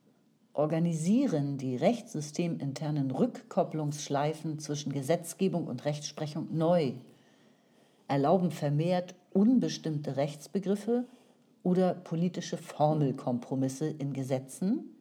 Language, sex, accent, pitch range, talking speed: German, female, German, 150-230 Hz, 70 wpm